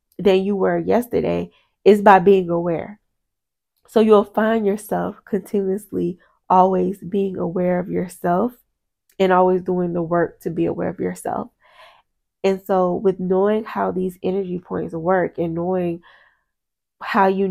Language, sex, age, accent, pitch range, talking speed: English, female, 20-39, American, 180-205 Hz, 140 wpm